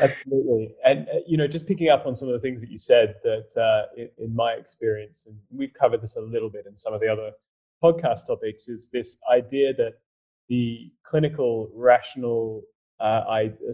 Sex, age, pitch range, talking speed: male, 20-39, 110-145 Hz, 185 wpm